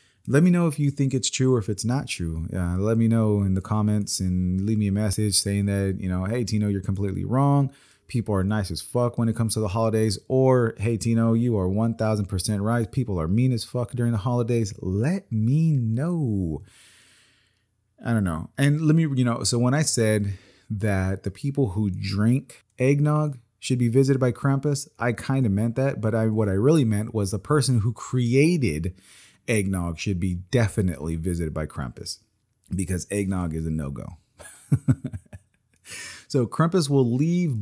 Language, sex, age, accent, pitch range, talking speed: English, male, 30-49, American, 95-130 Hz, 190 wpm